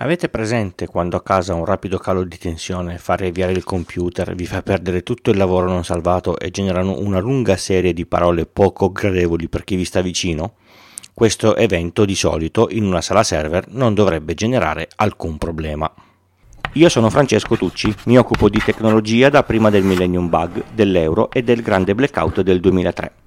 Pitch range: 90-115 Hz